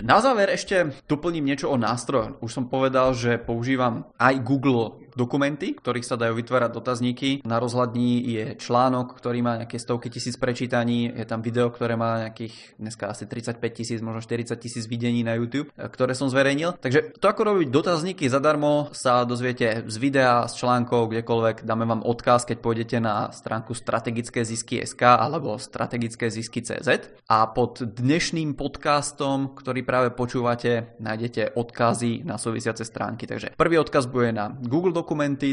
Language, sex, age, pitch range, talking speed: Czech, male, 20-39, 115-140 Hz, 155 wpm